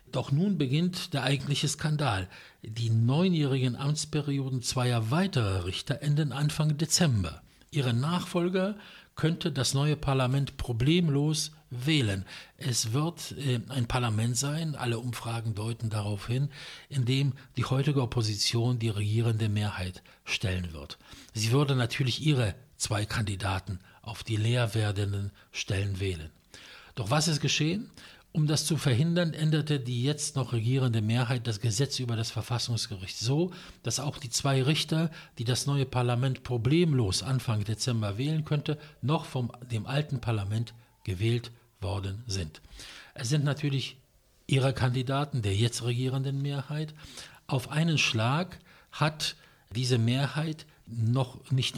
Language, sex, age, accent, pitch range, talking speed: English, male, 60-79, German, 115-150 Hz, 130 wpm